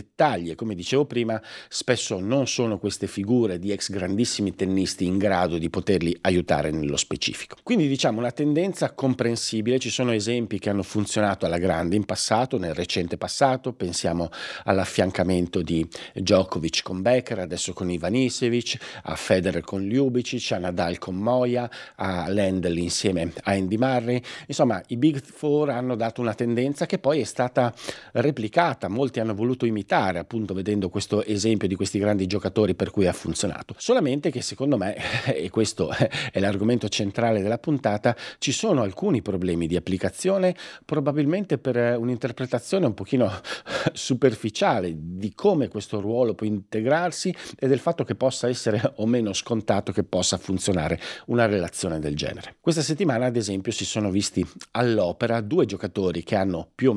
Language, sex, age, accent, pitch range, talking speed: Italian, male, 50-69, native, 95-125 Hz, 155 wpm